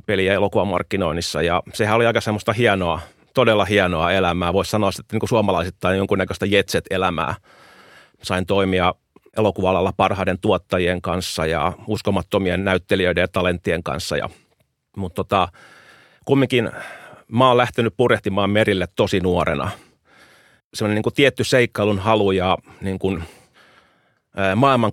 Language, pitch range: Finnish, 90-110 Hz